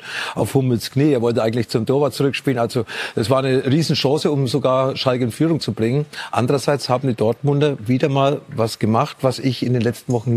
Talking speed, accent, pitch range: 205 wpm, German, 120-150 Hz